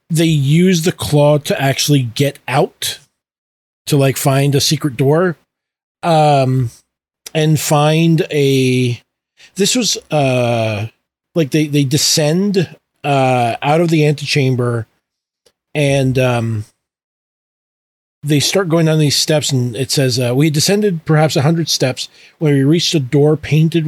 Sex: male